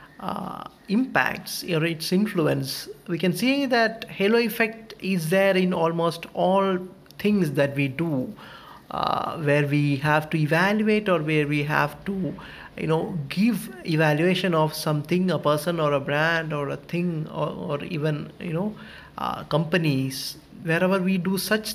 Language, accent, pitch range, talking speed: English, Indian, 150-185 Hz, 155 wpm